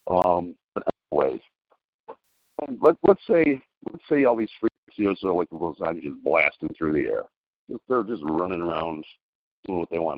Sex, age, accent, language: male, 60-79, American, English